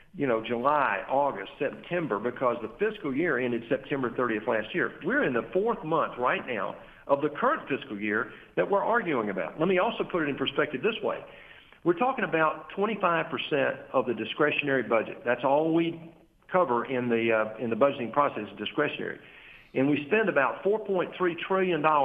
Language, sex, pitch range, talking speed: English, male, 120-170 Hz, 180 wpm